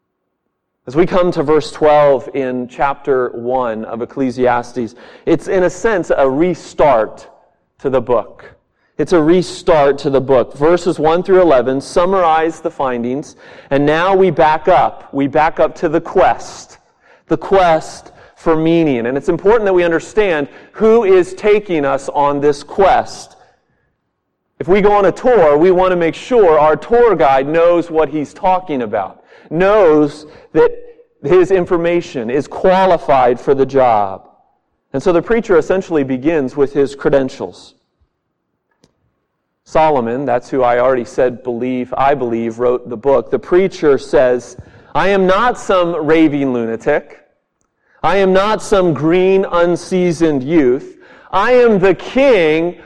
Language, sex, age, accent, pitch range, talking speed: English, male, 40-59, American, 135-185 Hz, 145 wpm